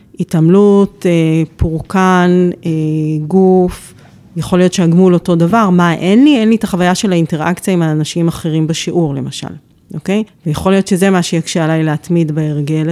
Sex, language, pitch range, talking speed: female, Hebrew, 165-205 Hz, 145 wpm